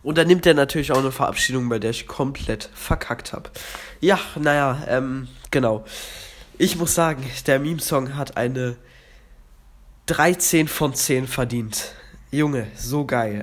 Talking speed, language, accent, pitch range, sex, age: 145 wpm, German, German, 125-160 Hz, male, 20-39